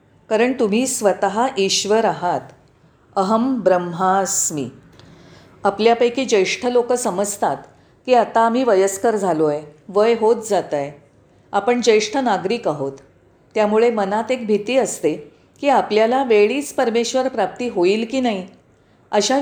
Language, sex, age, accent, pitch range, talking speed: Marathi, female, 40-59, native, 185-245 Hz, 135 wpm